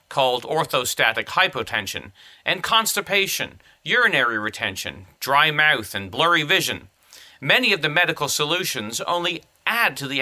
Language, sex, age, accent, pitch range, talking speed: English, male, 40-59, American, 120-170 Hz, 125 wpm